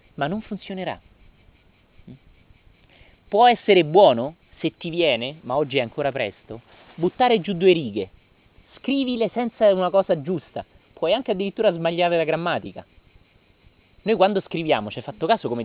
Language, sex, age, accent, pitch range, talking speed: Italian, male, 30-49, native, 140-210 Hz, 140 wpm